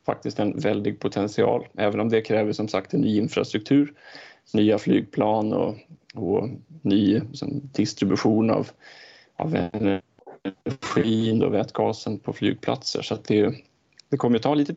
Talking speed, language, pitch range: 140 wpm, Swedish, 105-145 Hz